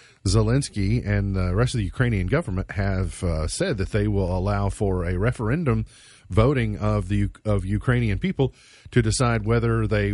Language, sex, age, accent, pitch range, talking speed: English, male, 40-59, American, 100-120 Hz, 165 wpm